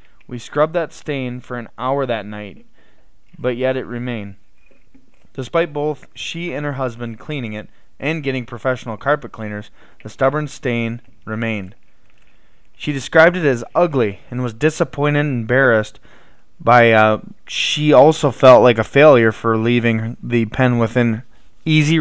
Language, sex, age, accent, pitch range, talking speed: English, male, 20-39, American, 115-140 Hz, 145 wpm